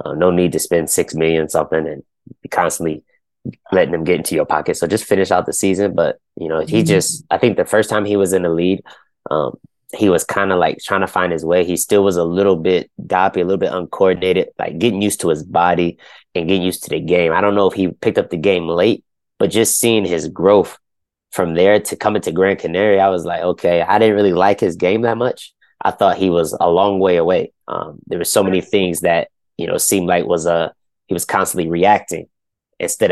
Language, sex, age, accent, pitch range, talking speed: English, male, 20-39, American, 90-120 Hz, 235 wpm